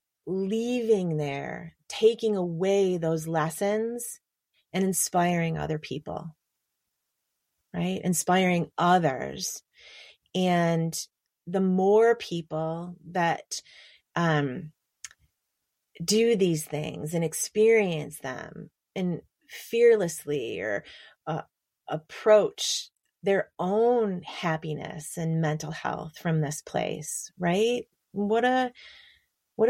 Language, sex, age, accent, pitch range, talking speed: English, female, 30-49, American, 155-195 Hz, 85 wpm